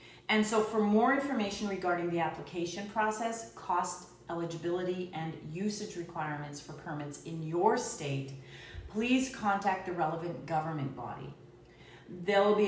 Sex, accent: female, American